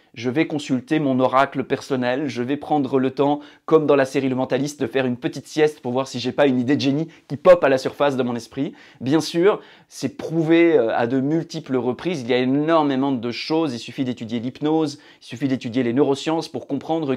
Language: French